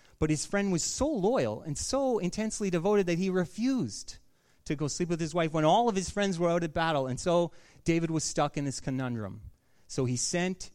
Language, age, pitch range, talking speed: English, 30-49, 115-175 Hz, 220 wpm